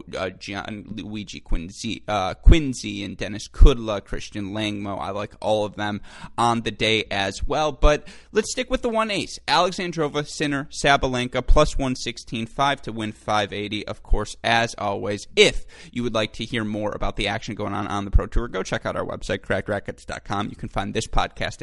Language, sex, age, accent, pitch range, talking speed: English, male, 20-39, American, 100-115 Hz, 195 wpm